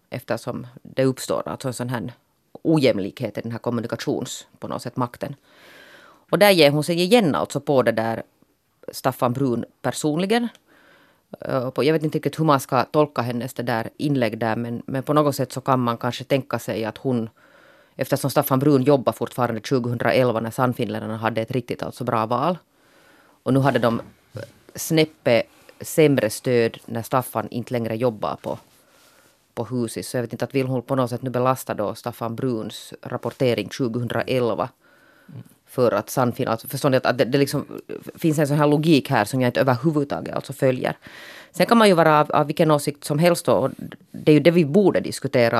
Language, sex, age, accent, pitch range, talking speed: Swedish, female, 30-49, Finnish, 120-145 Hz, 180 wpm